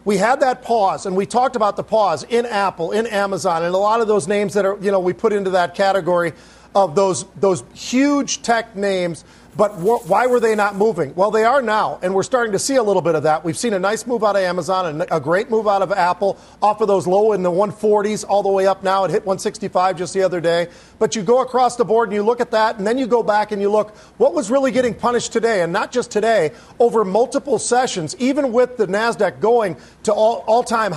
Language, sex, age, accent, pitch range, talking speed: English, male, 40-59, American, 190-230 Hz, 250 wpm